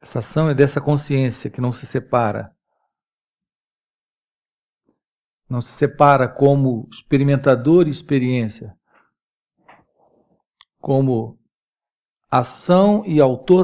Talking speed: 90 wpm